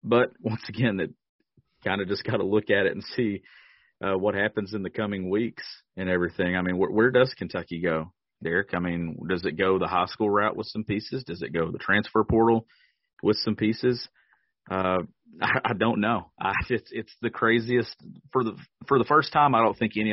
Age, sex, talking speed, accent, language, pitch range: 40-59, male, 215 wpm, American, English, 90-110 Hz